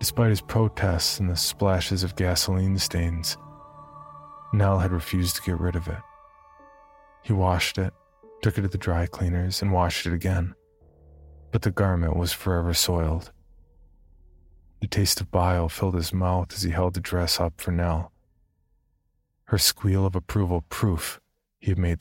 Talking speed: 160 wpm